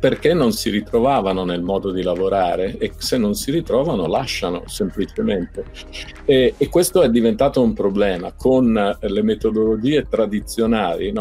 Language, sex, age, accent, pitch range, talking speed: Italian, male, 50-69, native, 100-125 Hz, 140 wpm